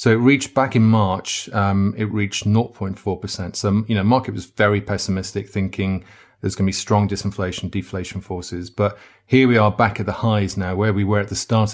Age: 30-49